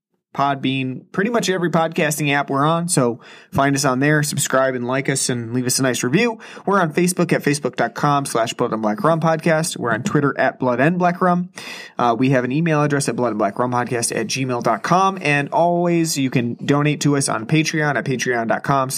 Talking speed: 210 wpm